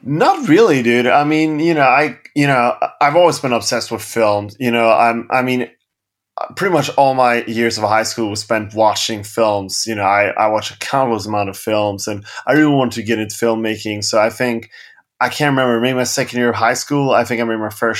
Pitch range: 105-125 Hz